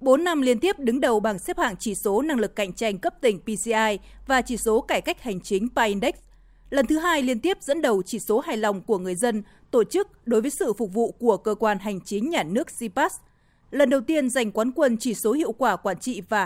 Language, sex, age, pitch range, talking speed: Vietnamese, female, 20-39, 215-265 Hz, 250 wpm